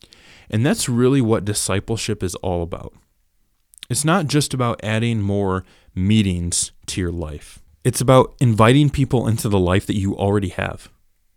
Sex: male